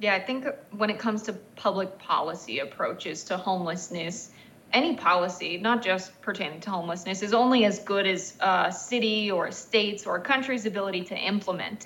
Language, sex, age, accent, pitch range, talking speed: English, female, 20-39, American, 195-225 Hz, 175 wpm